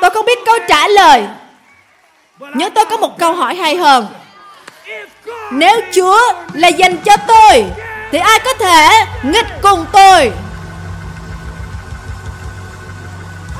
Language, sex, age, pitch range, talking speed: Vietnamese, female, 20-39, 245-375 Hz, 120 wpm